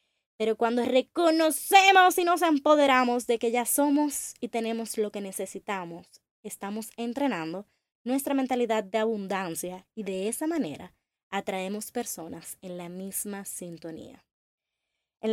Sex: female